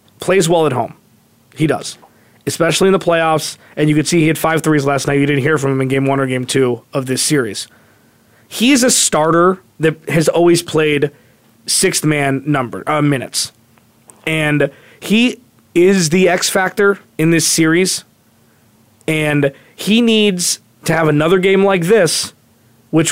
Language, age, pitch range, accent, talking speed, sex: English, 20-39, 140-180 Hz, American, 170 wpm, male